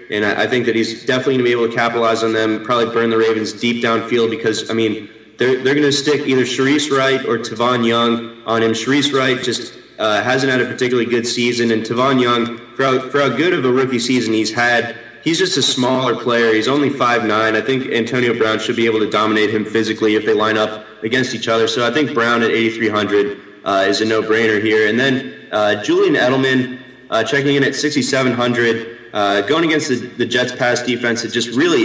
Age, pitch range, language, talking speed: 20-39, 110-125 Hz, English, 225 wpm